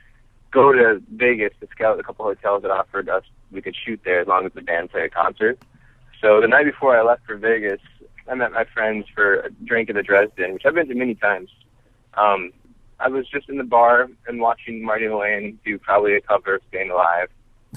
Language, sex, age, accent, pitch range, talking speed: English, male, 20-39, American, 110-125 Hz, 220 wpm